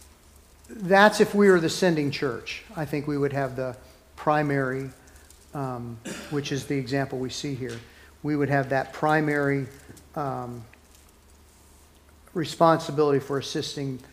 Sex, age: male, 50-69